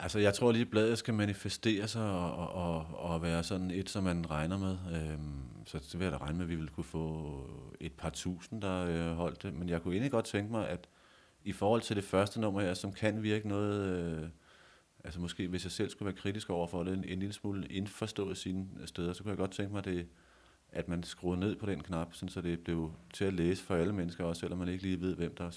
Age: 30-49